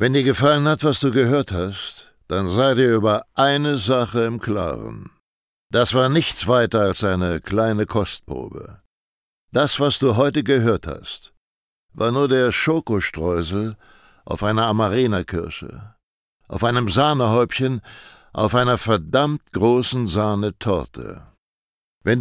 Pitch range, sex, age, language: 100-130 Hz, male, 60-79, German